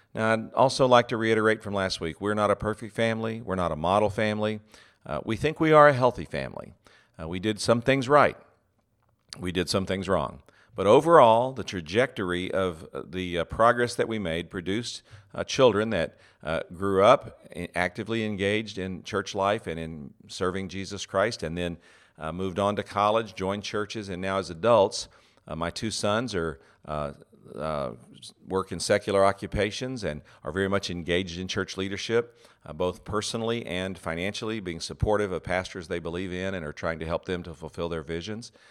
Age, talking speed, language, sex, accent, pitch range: 50-69, 185 wpm, English, male, American, 85-110 Hz